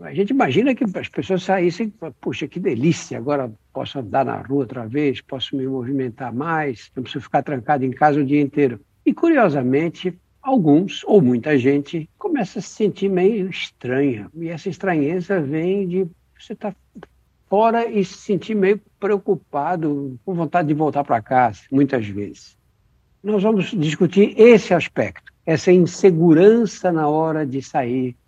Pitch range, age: 130-180 Hz, 60-79